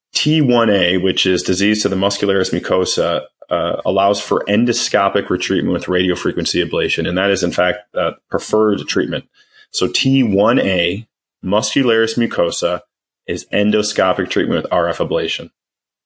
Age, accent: 20-39, American